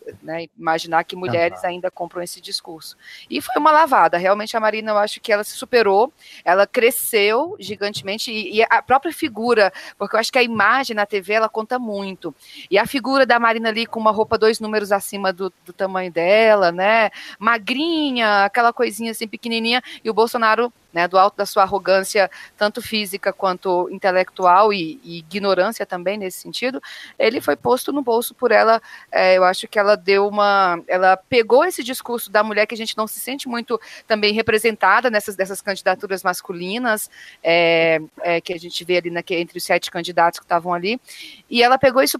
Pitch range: 190-240 Hz